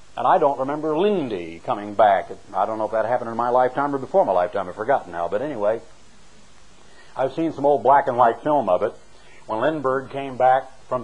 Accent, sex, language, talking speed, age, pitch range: American, male, English, 215 wpm, 60-79, 130-150 Hz